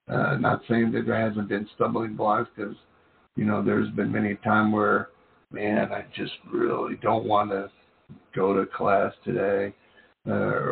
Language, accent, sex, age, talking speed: English, American, male, 60-79, 160 wpm